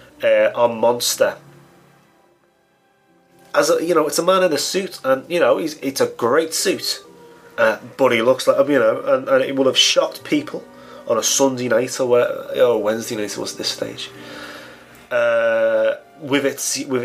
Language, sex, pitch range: English, male, 105-145 Hz